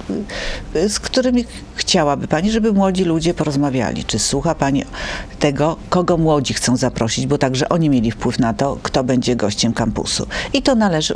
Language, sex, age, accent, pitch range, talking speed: Polish, female, 50-69, native, 120-170 Hz, 160 wpm